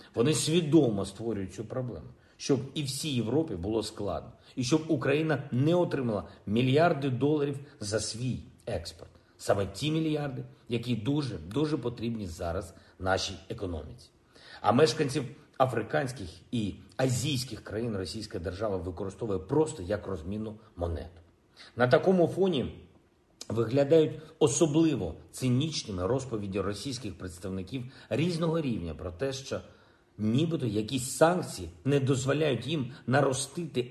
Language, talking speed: Ukrainian, 115 wpm